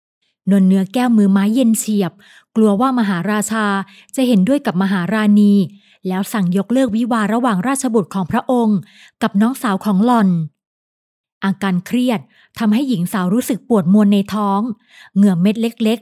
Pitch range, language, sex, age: 200-245 Hz, Thai, female, 20-39